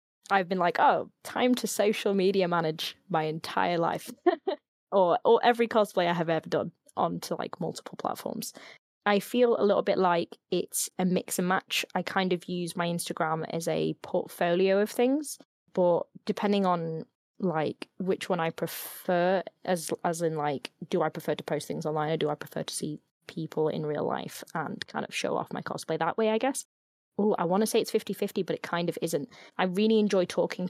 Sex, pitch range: female, 160-195 Hz